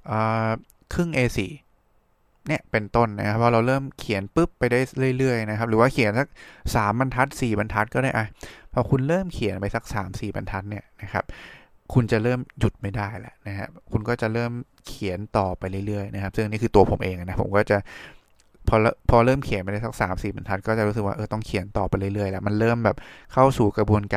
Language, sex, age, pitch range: English, male, 20-39, 100-120 Hz